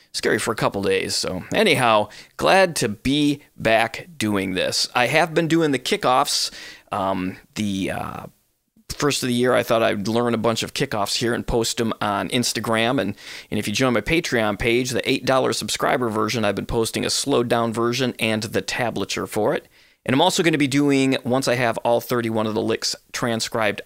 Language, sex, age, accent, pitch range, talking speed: English, male, 30-49, American, 115-150 Hz, 200 wpm